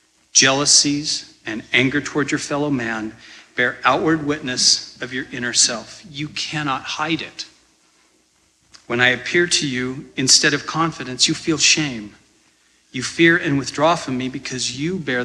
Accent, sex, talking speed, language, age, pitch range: American, male, 150 wpm, English, 40-59, 115-145 Hz